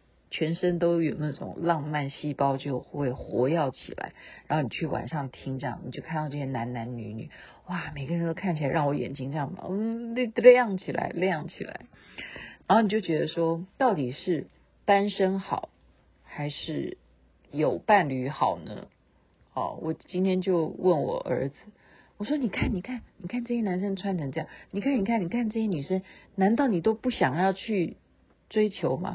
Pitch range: 160-270 Hz